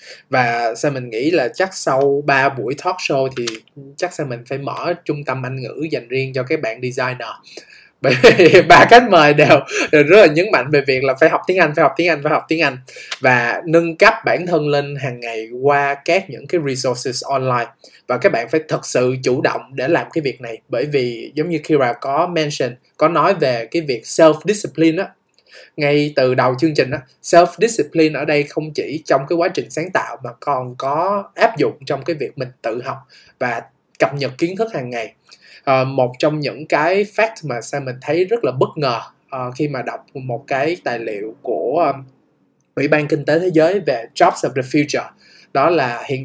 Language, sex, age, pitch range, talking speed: Vietnamese, male, 20-39, 130-165 Hz, 215 wpm